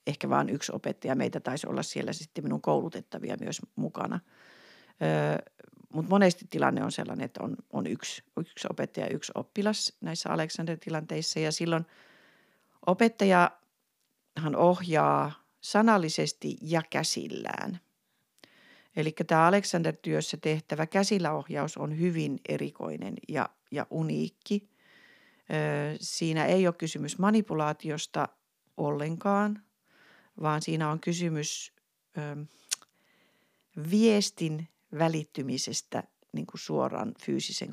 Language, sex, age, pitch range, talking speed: Finnish, female, 40-59, 150-195 Hz, 100 wpm